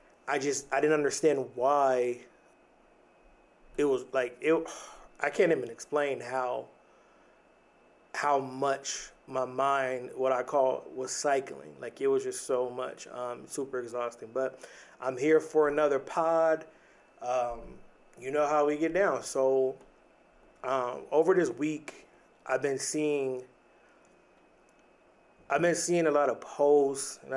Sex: male